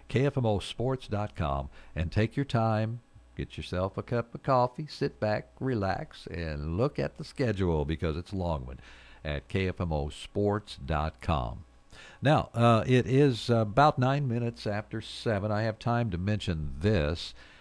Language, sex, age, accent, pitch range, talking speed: English, male, 60-79, American, 80-115 Hz, 135 wpm